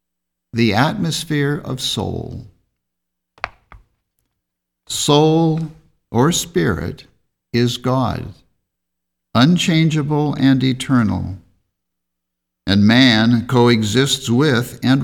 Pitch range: 85-135 Hz